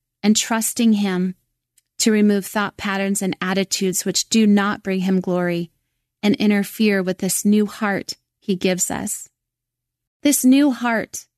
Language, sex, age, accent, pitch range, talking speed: English, female, 30-49, American, 185-220 Hz, 140 wpm